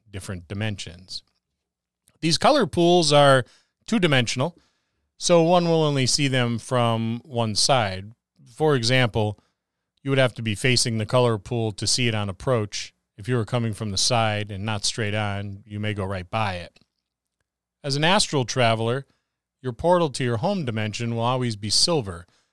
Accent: American